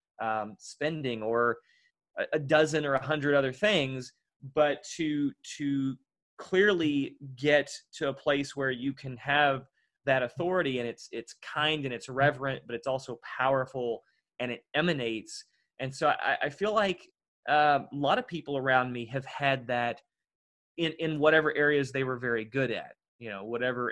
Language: English